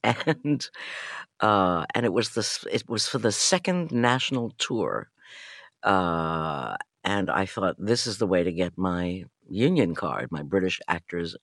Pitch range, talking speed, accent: 95-130 Hz, 150 wpm, American